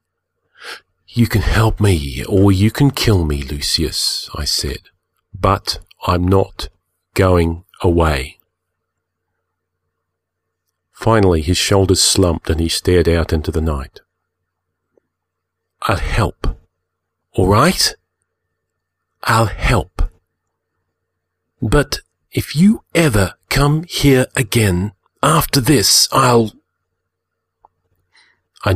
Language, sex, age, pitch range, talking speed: English, male, 40-59, 90-105 Hz, 95 wpm